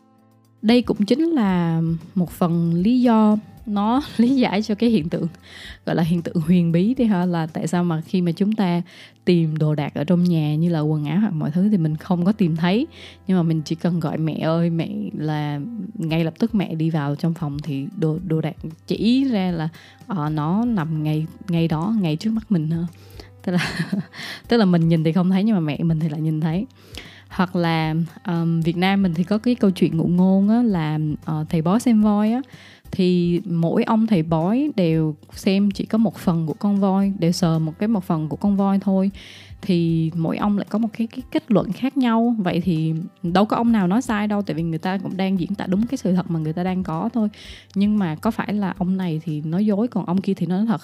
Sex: female